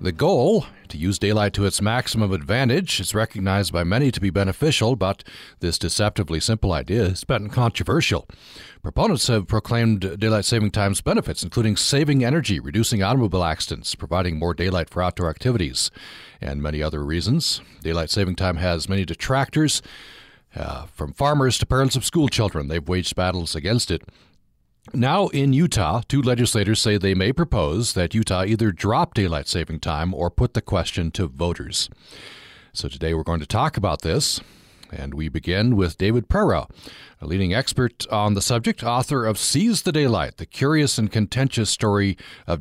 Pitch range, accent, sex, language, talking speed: 85-120 Hz, American, male, English, 170 wpm